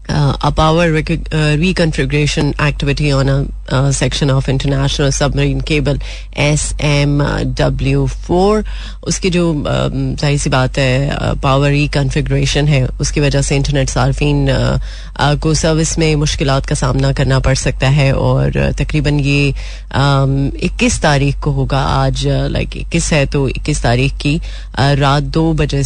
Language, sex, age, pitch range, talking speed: Hindi, female, 30-49, 135-150 Hz, 135 wpm